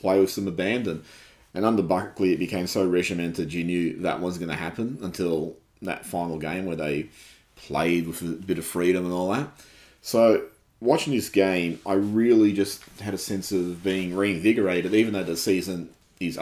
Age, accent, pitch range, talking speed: 30-49, Australian, 90-110 Hz, 185 wpm